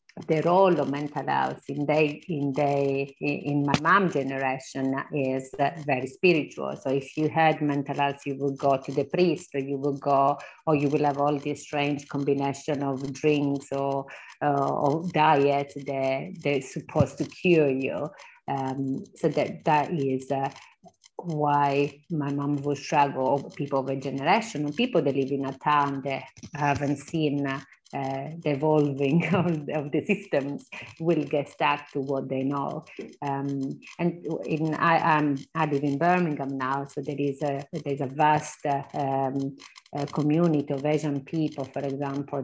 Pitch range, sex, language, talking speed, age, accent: 140-155 Hz, female, English, 165 wpm, 30-49, Italian